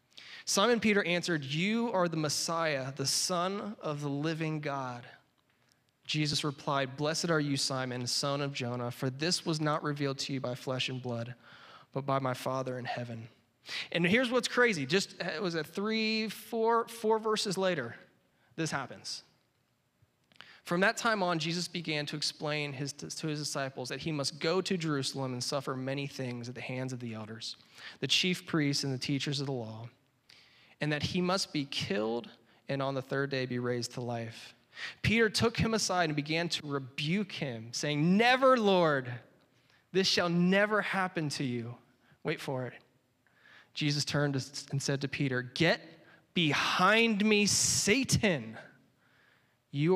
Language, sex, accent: English, male, American